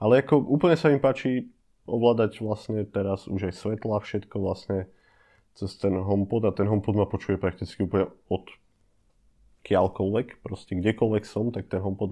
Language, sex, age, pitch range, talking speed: Slovak, male, 20-39, 100-120 Hz, 160 wpm